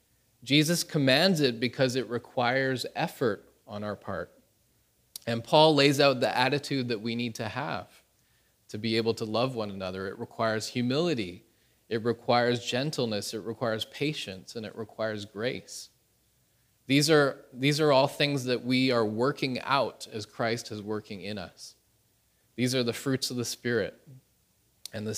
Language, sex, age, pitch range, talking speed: English, male, 20-39, 105-125 Hz, 155 wpm